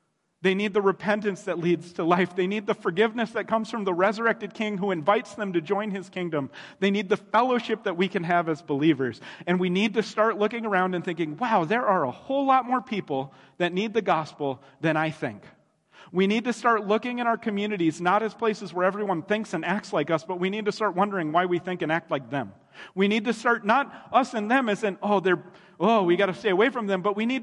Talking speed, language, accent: 245 wpm, English, American